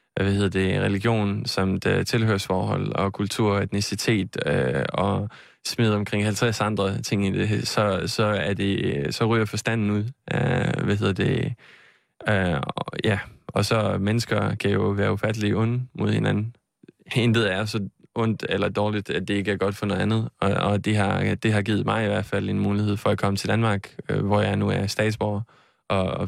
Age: 20-39